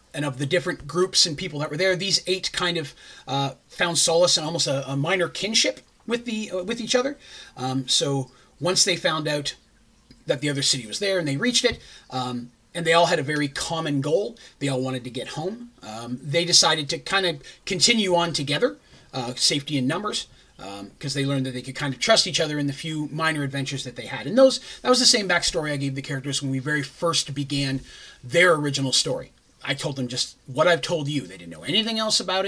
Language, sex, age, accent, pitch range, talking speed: English, male, 30-49, American, 135-185 Hz, 235 wpm